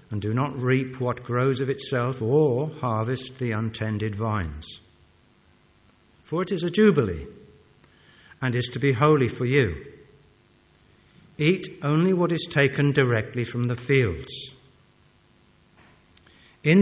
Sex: male